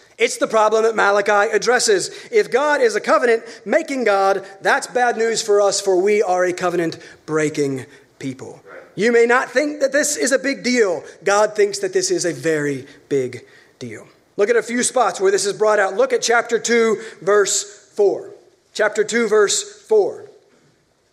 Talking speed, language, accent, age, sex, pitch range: 180 wpm, English, American, 30-49, male, 195-295 Hz